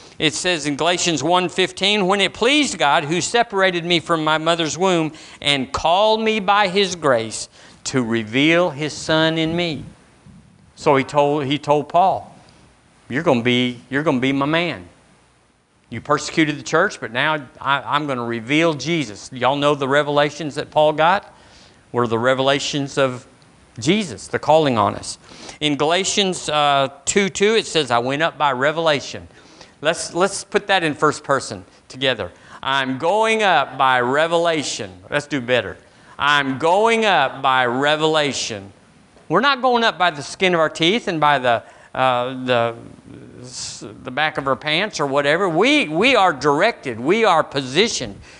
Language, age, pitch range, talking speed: English, 50-69, 135-175 Hz, 165 wpm